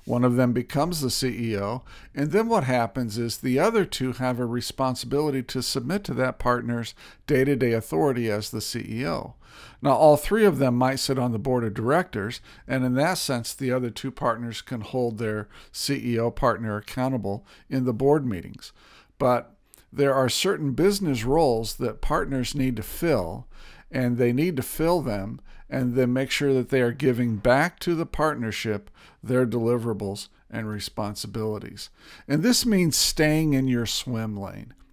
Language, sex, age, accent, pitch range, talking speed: English, male, 50-69, American, 115-145 Hz, 170 wpm